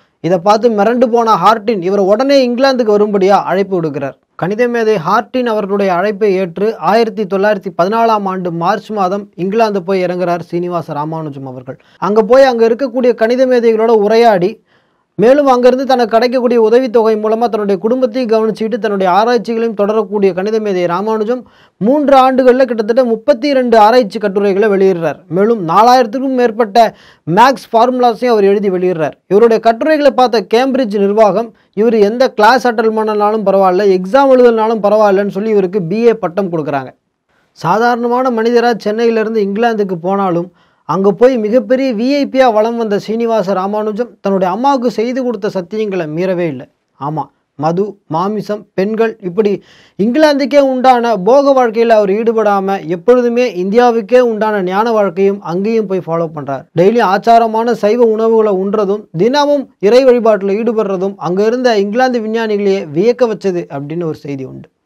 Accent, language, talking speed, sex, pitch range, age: native, Tamil, 130 wpm, male, 195-240 Hz, 20-39